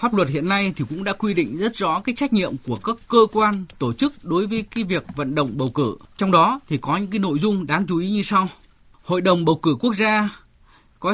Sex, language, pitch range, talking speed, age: male, Vietnamese, 150-225 Hz, 260 wpm, 20-39